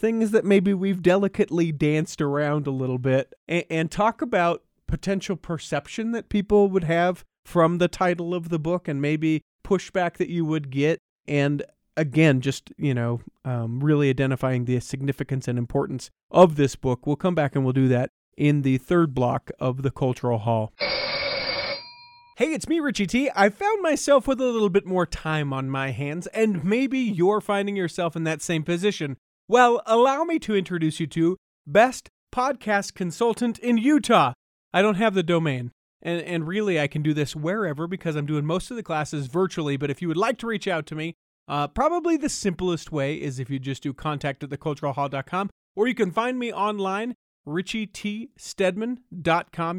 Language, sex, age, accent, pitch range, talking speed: English, male, 30-49, American, 150-210 Hz, 185 wpm